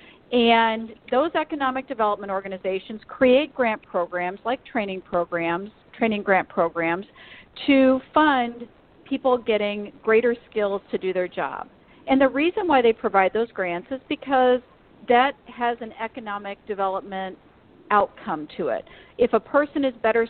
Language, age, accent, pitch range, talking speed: English, 50-69, American, 205-260 Hz, 140 wpm